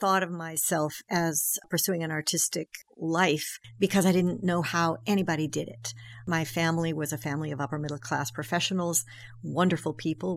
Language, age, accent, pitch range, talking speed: English, 60-79, American, 145-190 Hz, 160 wpm